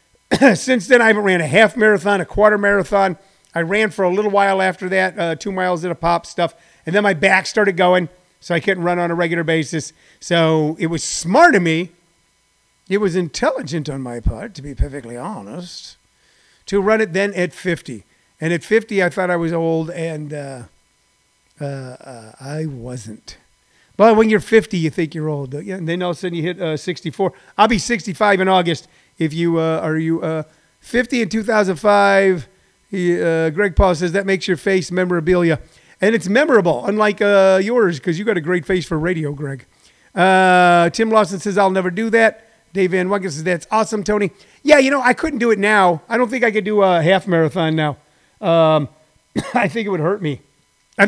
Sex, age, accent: male, 40-59, American